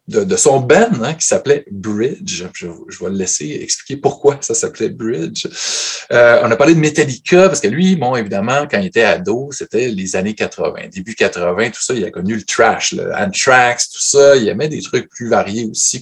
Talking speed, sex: 215 wpm, male